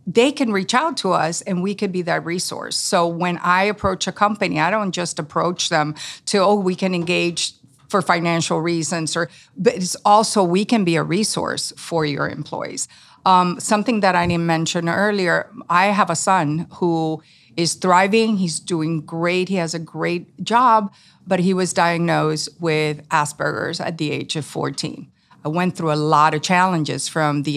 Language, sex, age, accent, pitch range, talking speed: English, female, 50-69, American, 155-185 Hz, 185 wpm